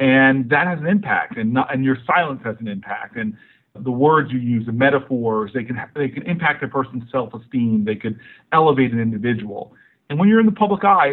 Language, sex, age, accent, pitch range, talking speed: English, male, 40-59, American, 115-140 Hz, 220 wpm